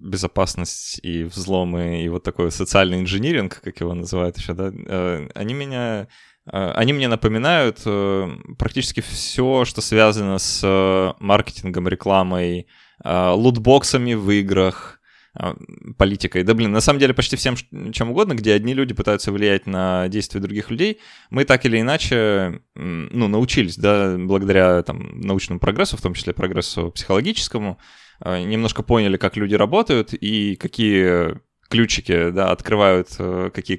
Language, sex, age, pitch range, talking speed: Russian, male, 20-39, 90-110 Hz, 130 wpm